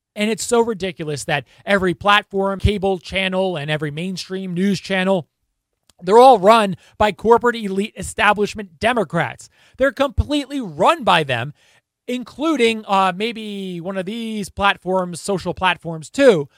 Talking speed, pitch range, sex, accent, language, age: 135 wpm, 175-230 Hz, male, American, English, 30-49